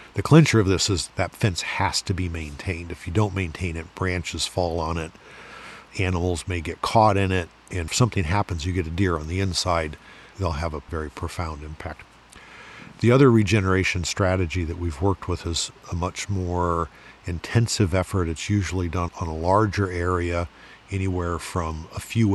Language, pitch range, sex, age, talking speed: English, 85-100 Hz, male, 50-69, 185 wpm